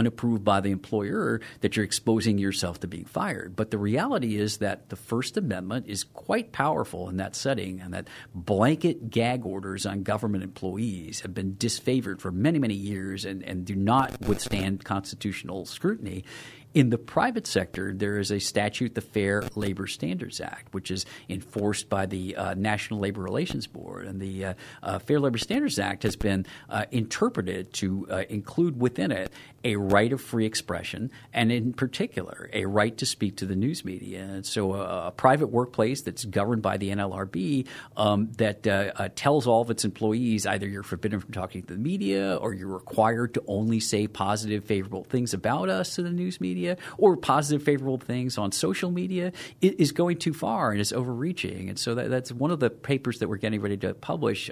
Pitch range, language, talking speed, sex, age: 95-125 Hz, English, 190 wpm, male, 50-69